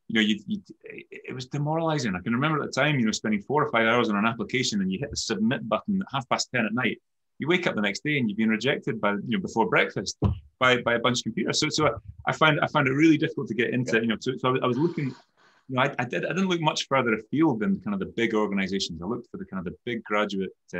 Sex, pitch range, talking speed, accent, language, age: male, 100-160 Hz, 295 wpm, British, English, 30-49